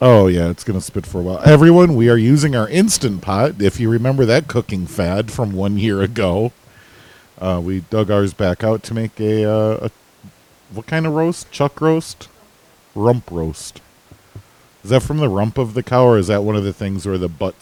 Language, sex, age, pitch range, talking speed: English, male, 40-59, 90-140 Hz, 215 wpm